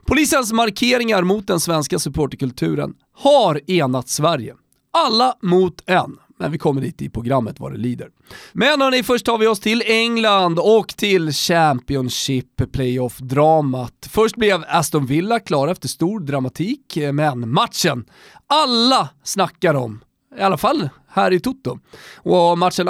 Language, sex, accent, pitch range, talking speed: Swedish, male, native, 140-225 Hz, 140 wpm